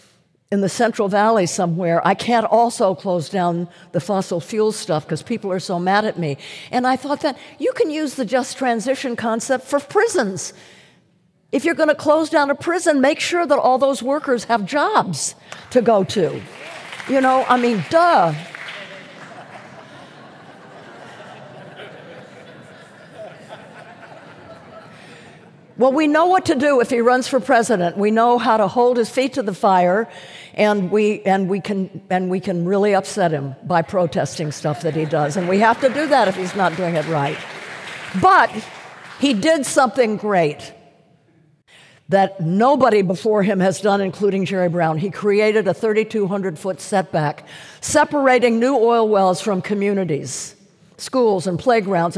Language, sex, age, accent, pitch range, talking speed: English, female, 50-69, American, 180-255 Hz, 155 wpm